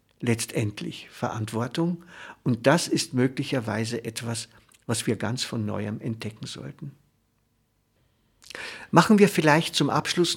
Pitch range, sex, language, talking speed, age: 120-155 Hz, male, German, 110 wpm, 60-79